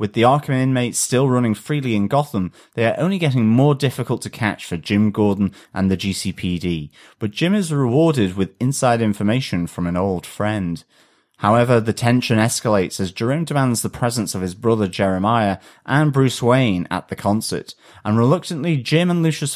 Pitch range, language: 100-135 Hz, English